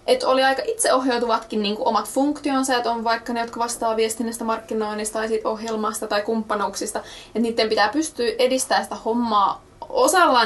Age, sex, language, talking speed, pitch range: 20-39, female, Finnish, 155 wpm, 220-250 Hz